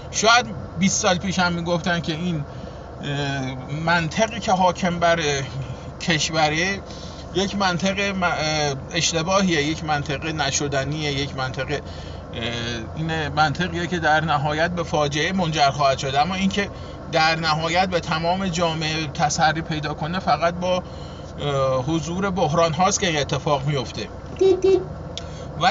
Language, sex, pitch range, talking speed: Persian, male, 140-185 Hz, 120 wpm